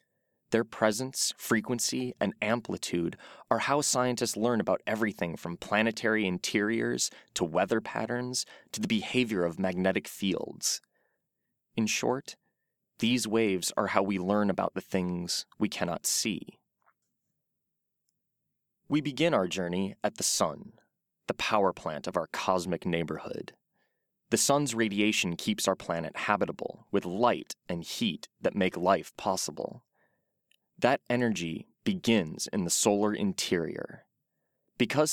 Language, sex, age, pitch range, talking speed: English, male, 20-39, 95-125 Hz, 125 wpm